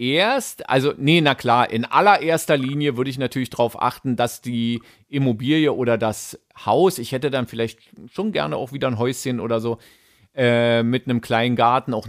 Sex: male